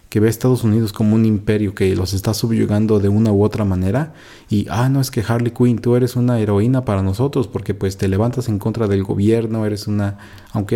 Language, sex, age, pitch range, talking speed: Spanish, male, 30-49, 100-120 Hz, 230 wpm